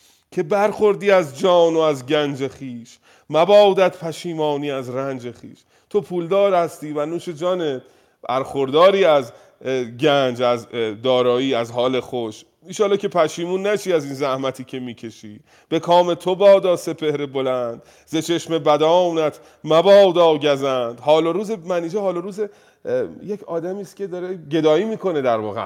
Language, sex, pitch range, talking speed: Persian, male, 125-175 Hz, 145 wpm